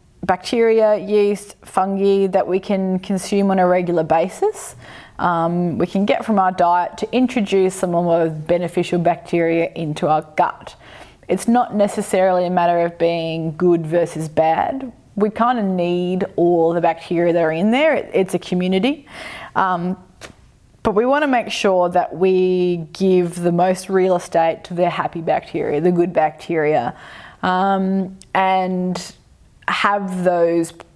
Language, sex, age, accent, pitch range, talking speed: English, female, 20-39, Australian, 170-200 Hz, 150 wpm